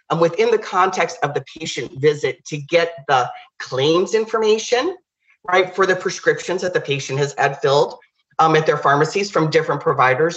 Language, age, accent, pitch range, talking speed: English, 40-59, American, 150-185 Hz, 170 wpm